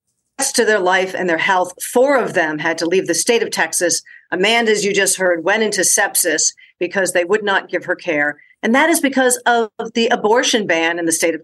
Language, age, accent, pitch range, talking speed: English, 50-69, American, 175-245 Hz, 225 wpm